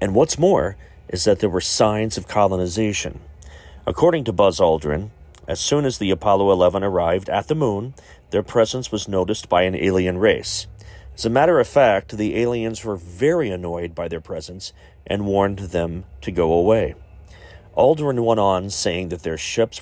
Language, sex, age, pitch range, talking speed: English, male, 40-59, 85-105 Hz, 175 wpm